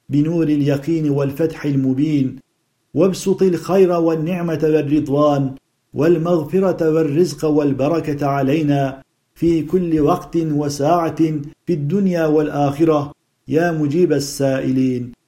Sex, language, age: male, Turkish, 50-69